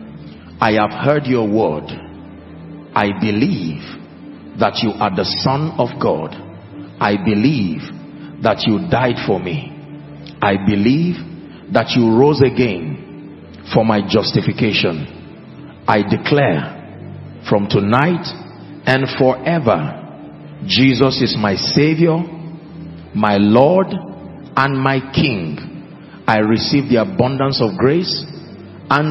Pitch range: 105-145 Hz